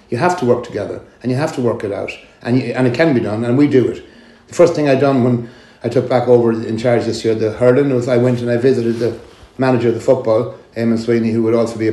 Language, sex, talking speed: English, male, 285 wpm